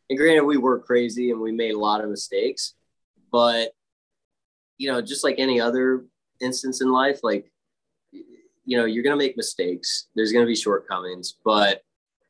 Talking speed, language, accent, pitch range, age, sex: 175 wpm, English, American, 105-135 Hz, 20-39, male